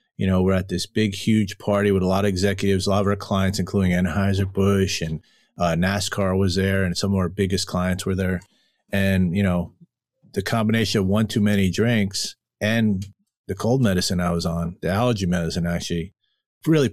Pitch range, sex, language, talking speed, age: 90-105 Hz, male, English, 195 wpm, 30-49